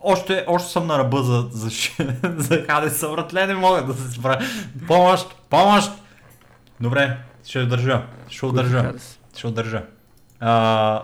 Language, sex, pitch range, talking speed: Bulgarian, male, 115-155 Hz, 145 wpm